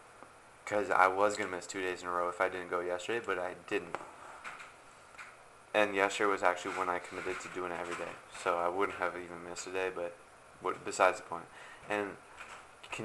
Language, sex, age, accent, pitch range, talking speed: English, male, 20-39, American, 90-105 Hz, 210 wpm